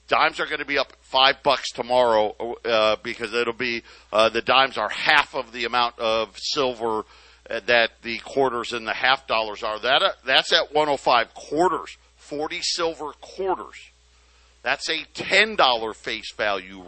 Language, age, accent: English, 50-69, American